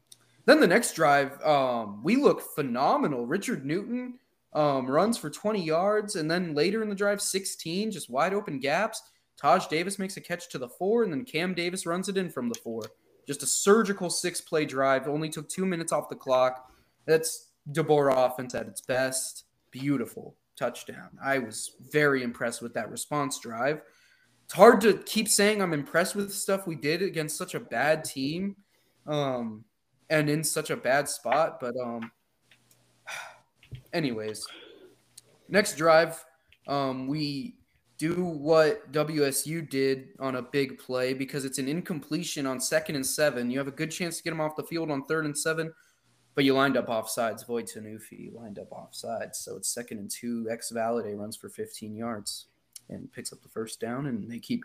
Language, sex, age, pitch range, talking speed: English, male, 20-39, 130-175 Hz, 180 wpm